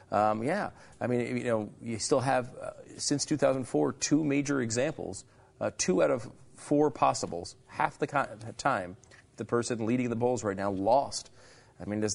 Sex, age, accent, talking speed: male, 40-59, American, 175 wpm